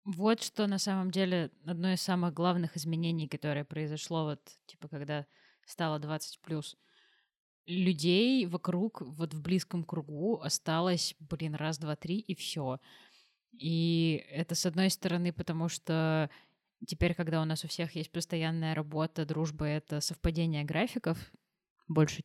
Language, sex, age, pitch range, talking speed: Russian, female, 20-39, 155-180 Hz, 140 wpm